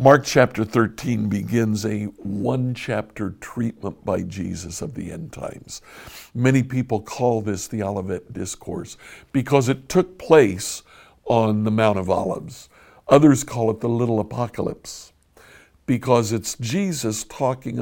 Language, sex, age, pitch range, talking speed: English, male, 60-79, 100-130 Hz, 130 wpm